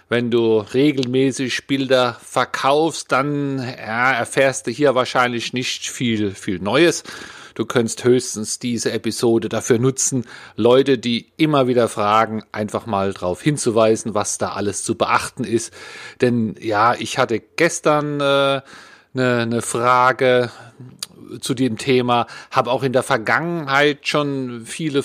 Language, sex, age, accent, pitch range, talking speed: German, male, 40-59, German, 110-140 Hz, 135 wpm